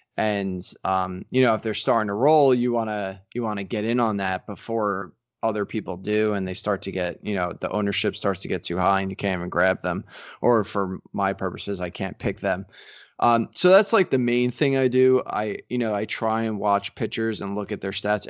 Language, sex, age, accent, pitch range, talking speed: English, male, 20-39, American, 100-120 Hz, 240 wpm